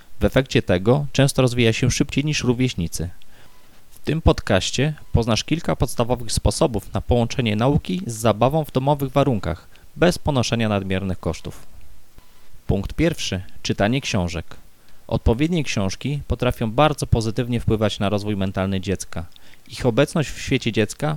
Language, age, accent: Polish, 20-39, native